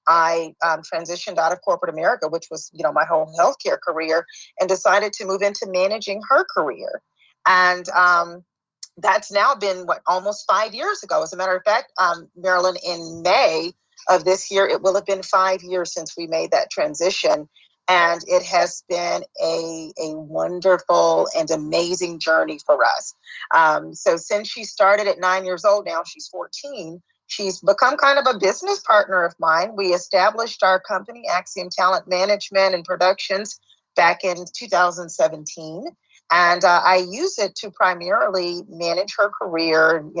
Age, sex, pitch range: 40-59, female, 170-205 Hz